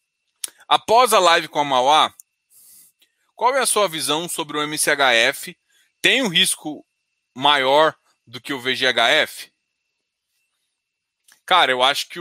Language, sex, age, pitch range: Portuguese, male, 20-39, 140-195 Hz